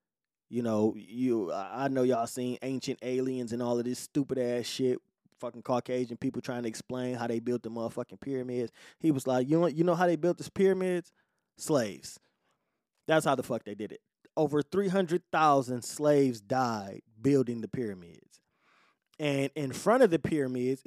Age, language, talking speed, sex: 20-39, English, 175 wpm, male